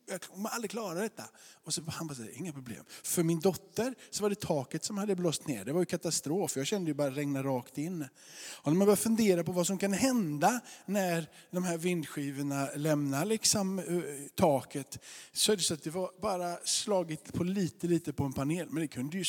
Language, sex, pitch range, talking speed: Swedish, male, 145-180 Hz, 215 wpm